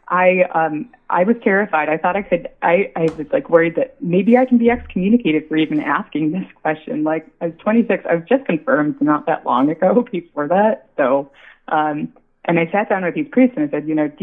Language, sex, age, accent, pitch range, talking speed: English, female, 20-39, American, 160-245 Hz, 230 wpm